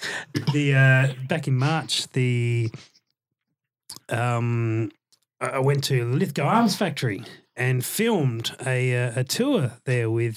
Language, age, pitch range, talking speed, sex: English, 30-49, 120-150 Hz, 125 wpm, male